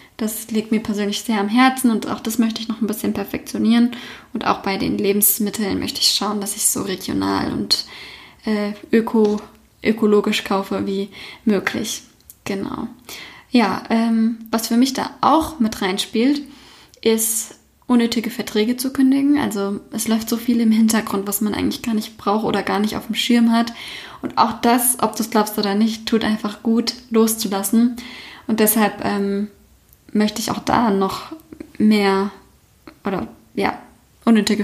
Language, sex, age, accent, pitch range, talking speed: German, female, 10-29, German, 210-245 Hz, 165 wpm